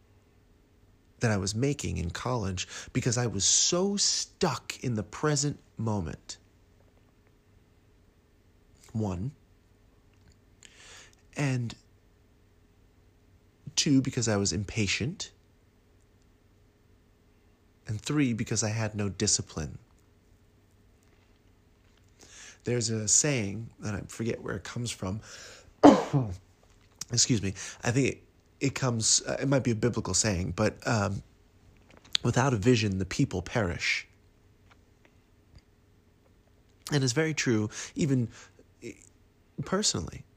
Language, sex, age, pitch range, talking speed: English, male, 30-49, 95-115 Hz, 100 wpm